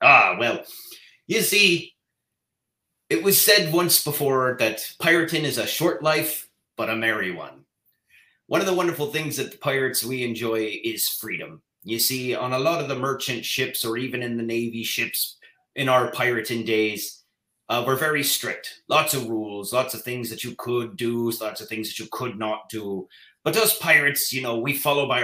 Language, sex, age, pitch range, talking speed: English, male, 30-49, 115-155 Hz, 190 wpm